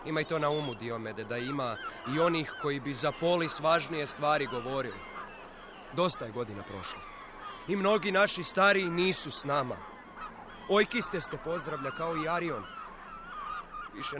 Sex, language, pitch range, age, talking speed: male, Croatian, 125-185 Hz, 30-49, 150 wpm